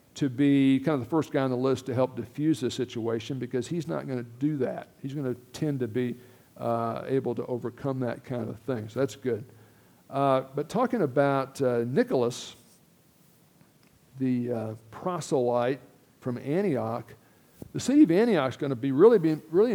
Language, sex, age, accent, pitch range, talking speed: English, male, 60-79, American, 125-155 Hz, 180 wpm